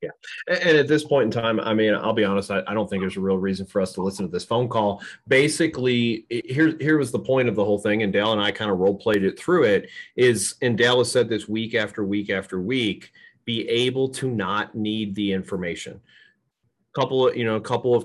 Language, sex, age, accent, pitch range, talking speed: English, male, 30-49, American, 95-130 Hz, 245 wpm